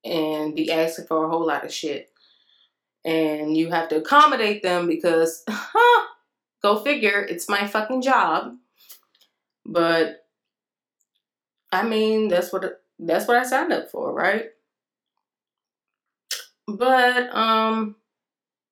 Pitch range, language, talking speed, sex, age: 165-220 Hz, English, 120 wpm, female, 20-39